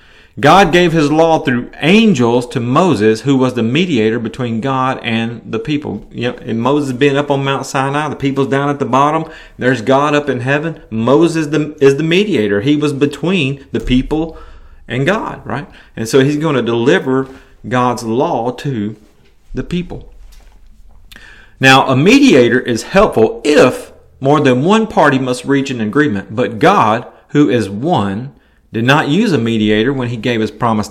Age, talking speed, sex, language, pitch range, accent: 30-49, 170 wpm, male, English, 120-160 Hz, American